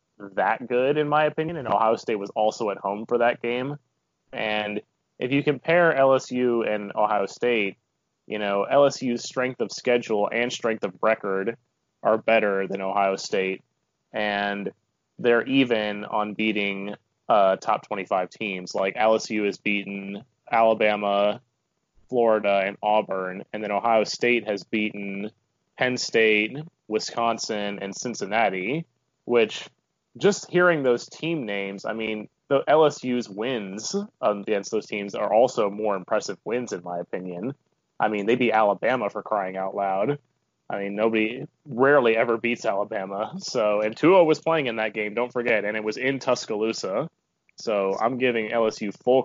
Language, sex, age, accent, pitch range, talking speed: English, male, 20-39, American, 105-130 Hz, 150 wpm